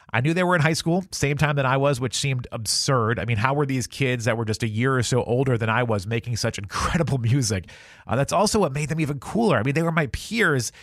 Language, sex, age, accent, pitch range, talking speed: English, male, 30-49, American, 110-145 Hz, 275 wpm